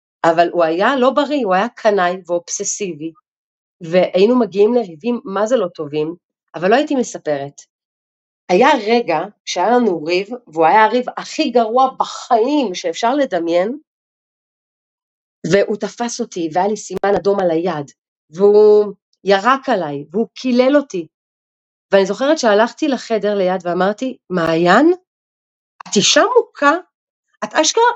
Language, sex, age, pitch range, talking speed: Hebrew, female, 40-59, 180-260 Hz, 125 wpm